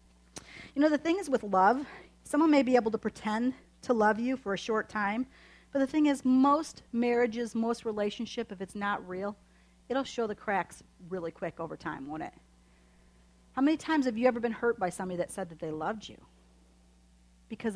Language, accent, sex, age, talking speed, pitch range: English, American, female, 40-59, 200 wpm, 170-240 Hz